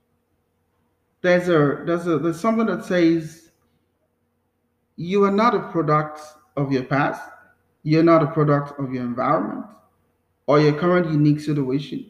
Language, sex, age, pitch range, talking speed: English, male, 30-49, 120-175 Hz, 140 wpm